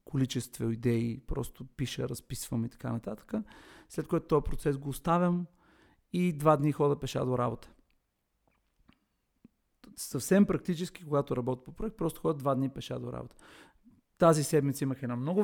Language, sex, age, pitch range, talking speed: Bulgarian, male, 40-59, 125-155 Hz, 150 wpm